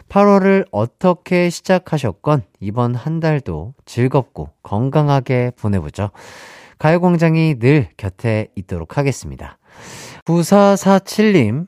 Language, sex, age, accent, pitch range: Korean, male, 40-59, native, 100-165 Hz